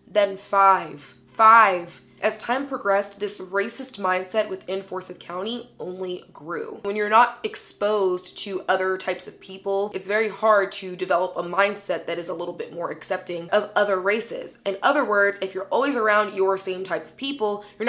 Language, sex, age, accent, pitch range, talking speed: English, female, 20-39, American, 185-225 Hz, 180 wpm